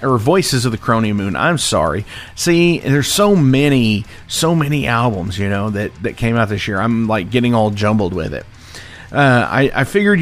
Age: 40-59